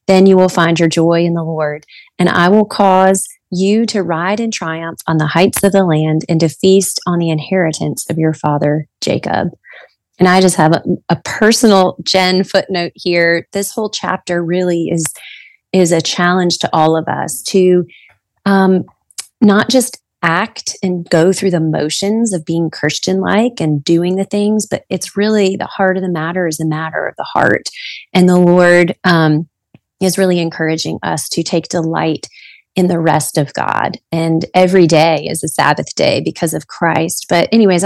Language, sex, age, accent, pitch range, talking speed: English, female, 30-49, American, 165-190 Hz, 185 wpm